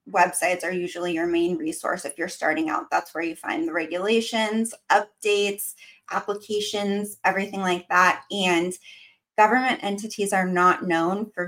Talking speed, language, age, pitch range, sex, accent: 145 wpm, English, 20-39, 185-240 Hz, female, American